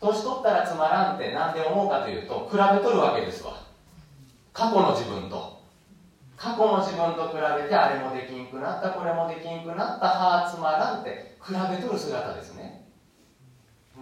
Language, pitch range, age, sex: Japanese, 155-215 Hz, 40-59, male